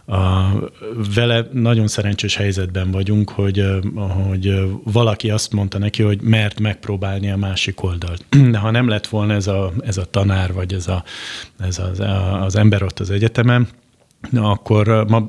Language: Hungarian